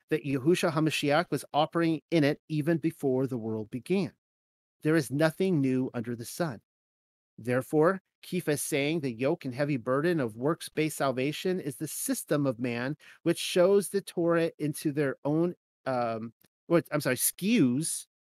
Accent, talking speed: American, 155 wpm